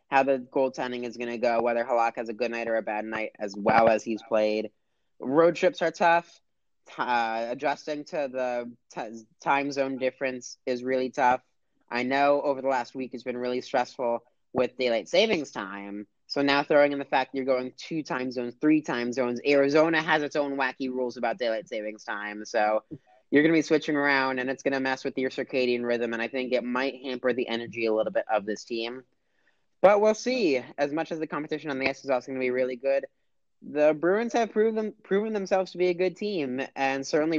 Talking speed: 215 wpm